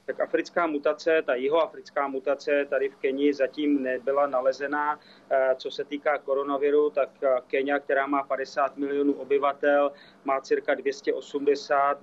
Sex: male